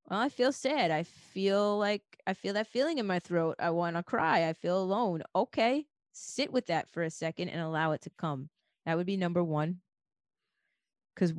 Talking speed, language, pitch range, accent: 205 wpm, English, 160-190 Hz, American